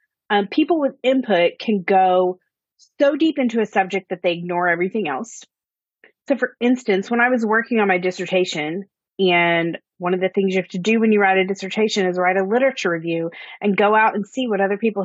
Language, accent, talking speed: English, American, 210 wpm